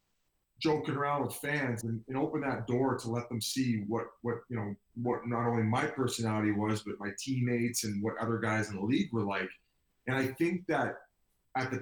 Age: 30-49